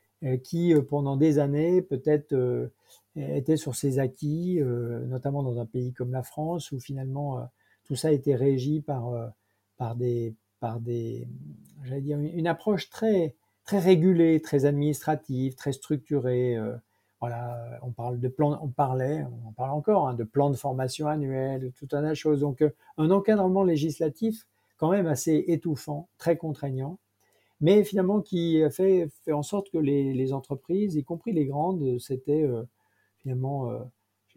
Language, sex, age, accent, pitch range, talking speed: French, male, 50-69, French, 125-155 Hz, 160 wpm